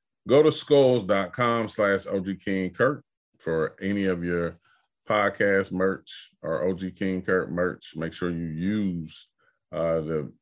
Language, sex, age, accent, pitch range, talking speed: English, male, 30-49, American, 85-100 Hz, 140 wpm